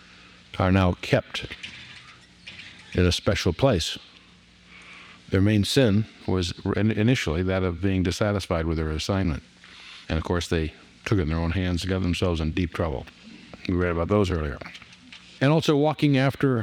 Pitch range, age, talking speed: 90-120 Hz, 60-79, 160 wpm